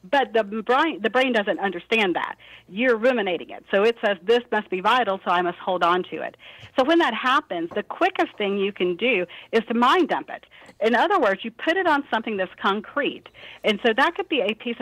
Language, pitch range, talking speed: English, 185-240 Hz, 230 wpm